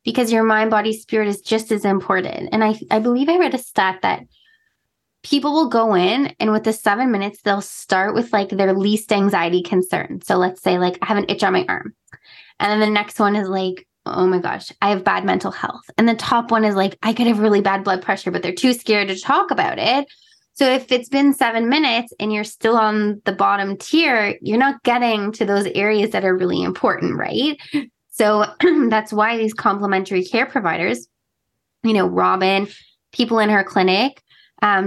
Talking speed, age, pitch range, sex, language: 210 wpm, 20-39, 200-250 Hz, female, English